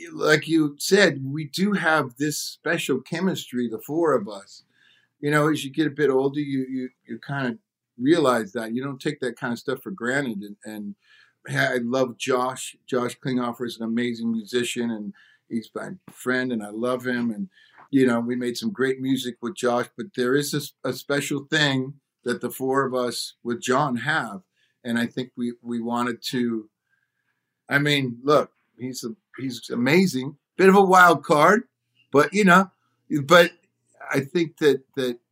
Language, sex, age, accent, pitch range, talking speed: English, male, 50-69, American, 115-145 Hz, 180 wpm